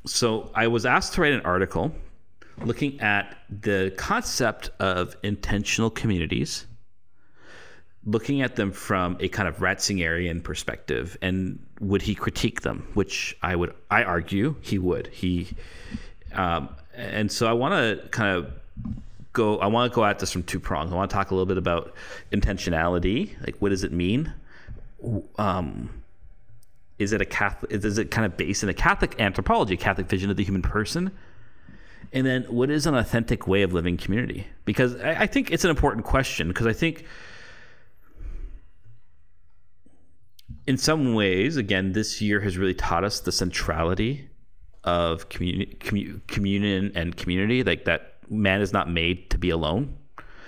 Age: 40-59